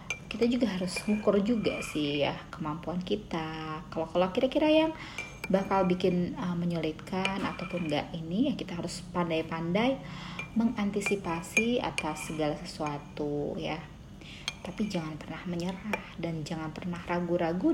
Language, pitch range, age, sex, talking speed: Indonesian, 165-215 Hz, 30-49, female, 120 wpm